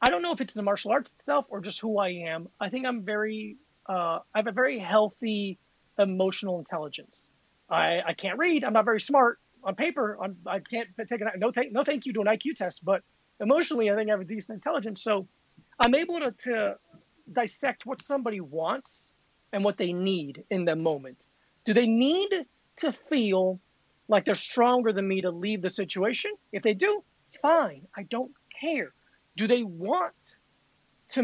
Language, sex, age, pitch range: English, male, 30-49, 190-245 Hz